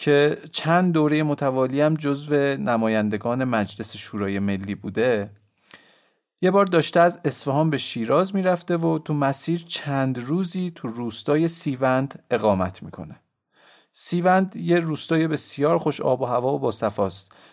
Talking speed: 135 wpm